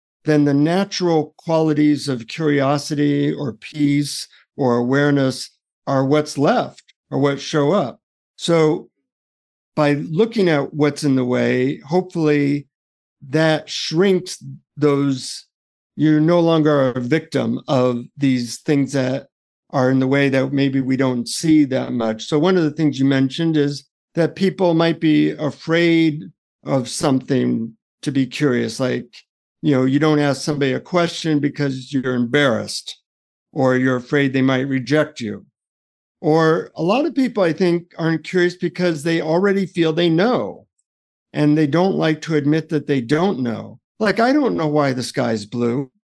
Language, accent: English, American